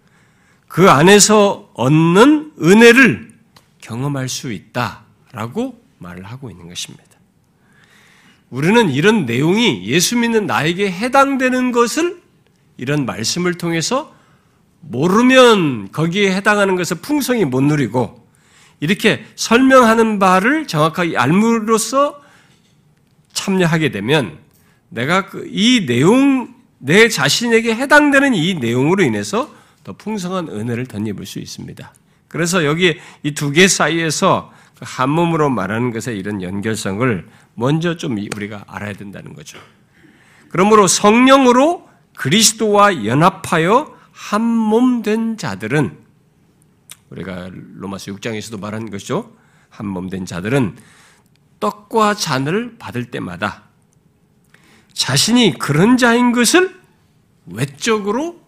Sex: male